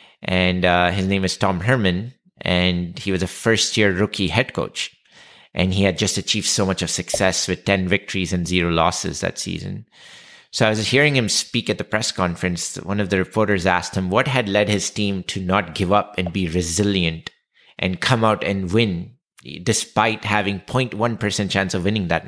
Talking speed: 195 wpm